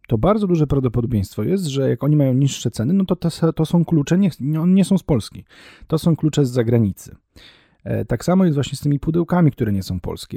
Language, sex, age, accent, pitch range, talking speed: Polish, male, 30-49, native, 110-140 Hz, 225 wpm